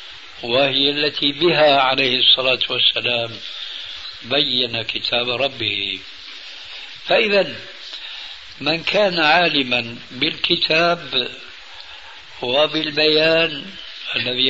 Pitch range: 125-160 Hz